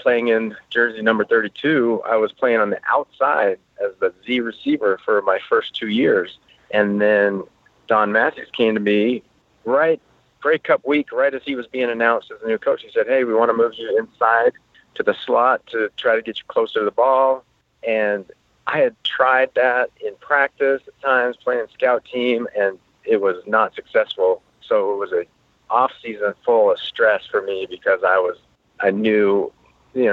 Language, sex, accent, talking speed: English, male, American, 190 wpm